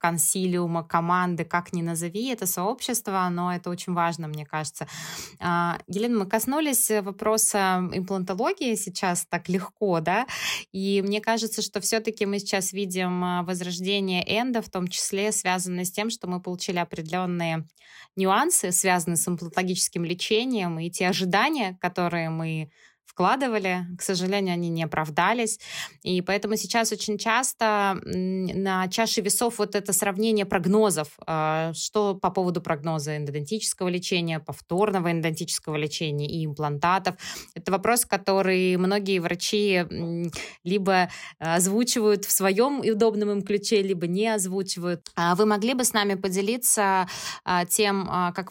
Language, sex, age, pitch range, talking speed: Russian, female, 20-39, 175-210 Hz, 125 wpm